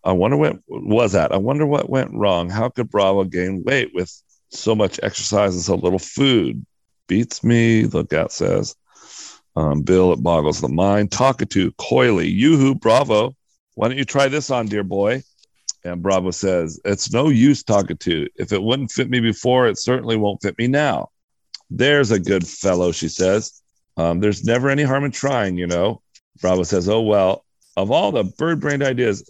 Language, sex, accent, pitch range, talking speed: English, male, American, 95-135 Hz, 190 wpm